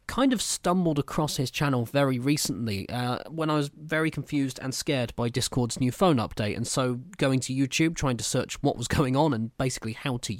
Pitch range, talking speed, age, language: 115-160 Hz, 215 wpm, 20-39, English